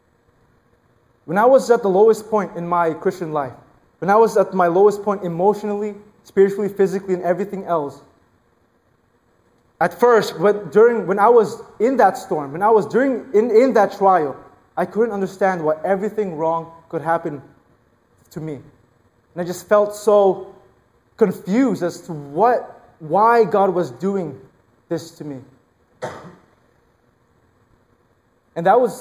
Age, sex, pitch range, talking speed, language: 20-39, male, 125-200 Hz, 145 wpm, English